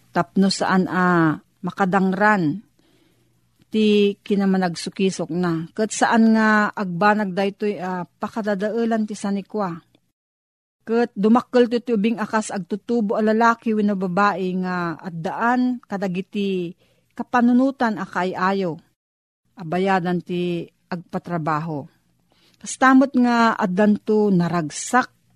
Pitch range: 170-215 Hz